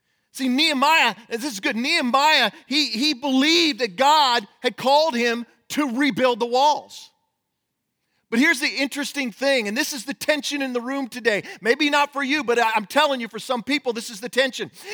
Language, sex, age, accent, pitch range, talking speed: English, male, 40-59, American, 205-295 Hz, 190 wpm